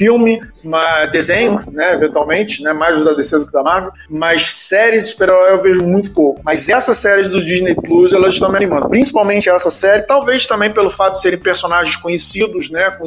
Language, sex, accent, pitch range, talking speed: Portuguese, male, Brazilian, 165-220 Hz, 190 wpm